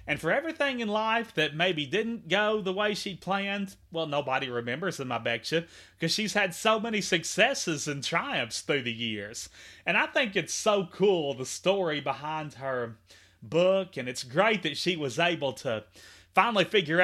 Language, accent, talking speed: English, American, 180 wpm